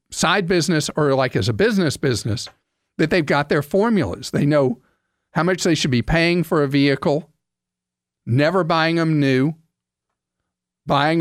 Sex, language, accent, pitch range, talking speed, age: male, English, American, 130-175 Hz, 155 wpm, 50-69